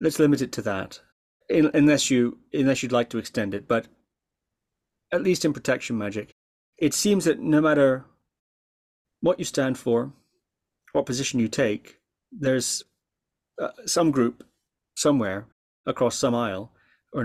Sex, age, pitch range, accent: male, 30-49, 110-135 Hz, British